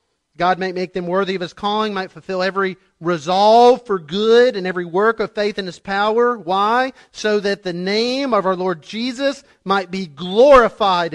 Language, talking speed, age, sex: English, 185 wpm, 40-59, male